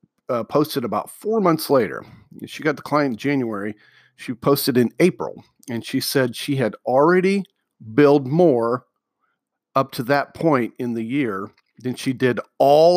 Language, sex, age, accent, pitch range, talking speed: English, male, 50-69, American, 125-160 Hz, 160 wpm